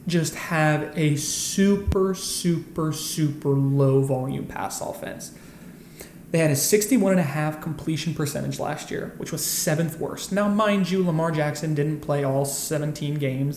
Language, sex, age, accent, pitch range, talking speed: English, male, 20-39, American, 145-175 Hz, 135 wpm